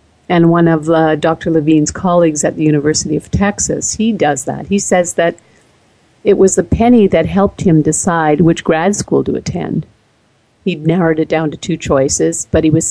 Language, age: English, 50-69